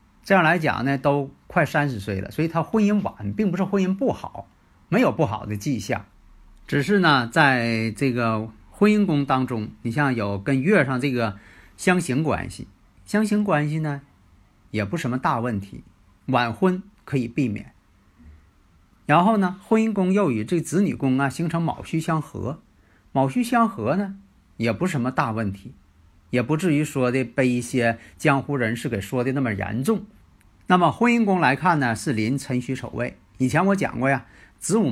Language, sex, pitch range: Chinese, male, 105-165 Hz